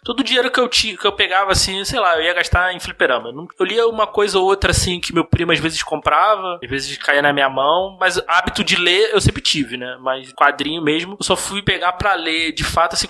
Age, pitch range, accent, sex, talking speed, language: 20-39, 135-180 Hz, Brazilian, male, 250 wpm, Portuguese